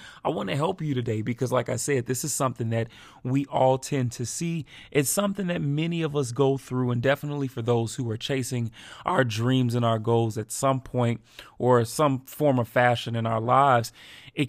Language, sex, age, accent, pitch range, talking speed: English, male, 30-49, American, 120-145 Hz, 210 wpm